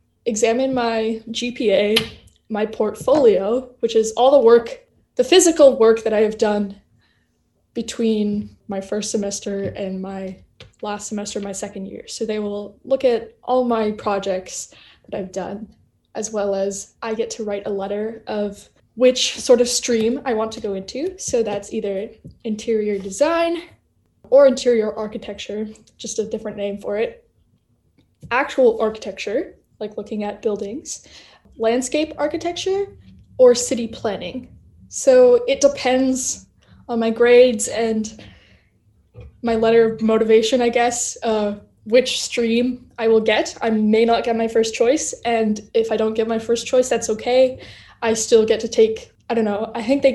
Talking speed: 155 wpm